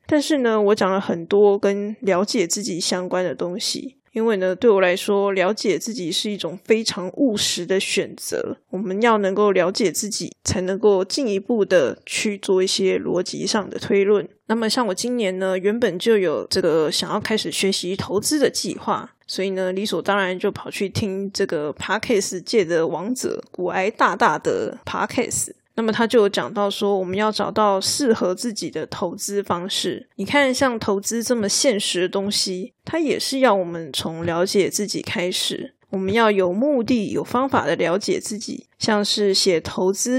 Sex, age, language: female, 20-39, Chinese